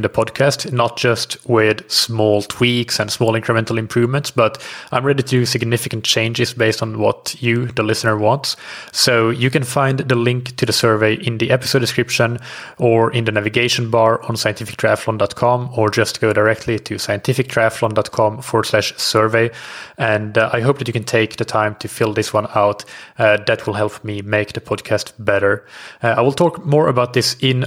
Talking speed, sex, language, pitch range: 185 wpm, male, English, 110-130 Hz